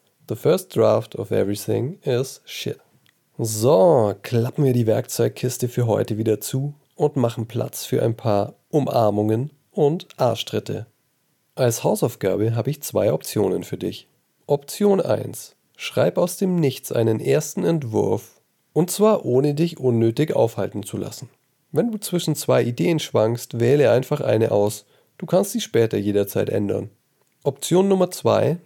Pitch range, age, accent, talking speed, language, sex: 110-150 Hz, 40-59, German, 145 wpm, German, male